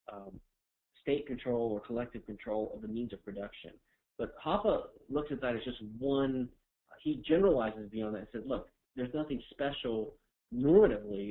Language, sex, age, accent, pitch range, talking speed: English, male, 40-59, American, 105-135 Hz, 160 wpm